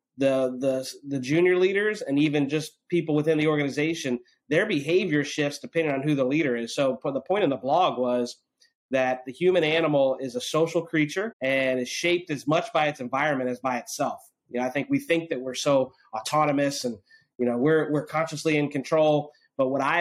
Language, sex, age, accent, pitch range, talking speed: English, male, 30-49, American, 130-160 Hz, 205 wpm